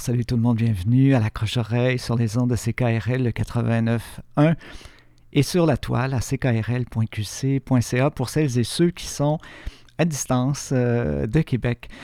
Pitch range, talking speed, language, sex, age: 120-150 Hz, 150 wpm, French, male, 50-69